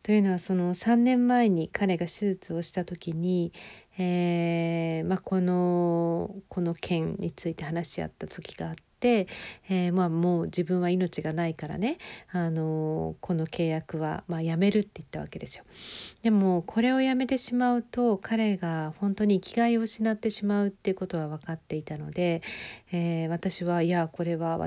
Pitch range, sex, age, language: 165-195 Hz, female, 40-59, Japanese